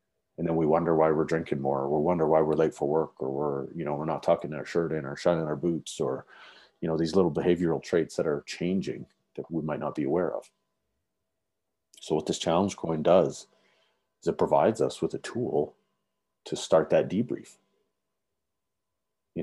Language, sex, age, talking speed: English, male, 40-59, 200 wpm